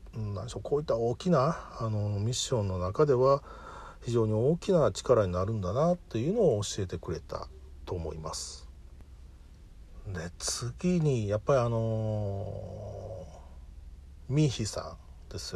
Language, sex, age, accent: Japanese, male, 50-69, native